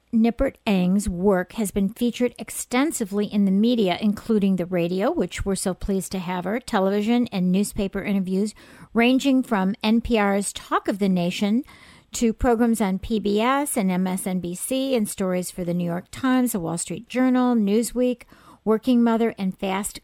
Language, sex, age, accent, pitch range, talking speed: English, female, 50-69, American, 190-240 Hz, 160 wpm